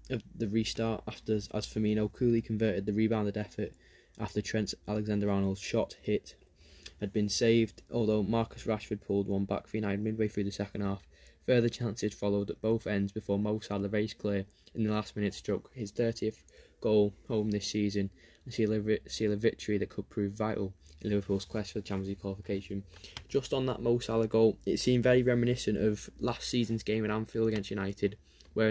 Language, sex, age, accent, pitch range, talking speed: English, male, 10-29, British, 100-115 Hz, 190 wpm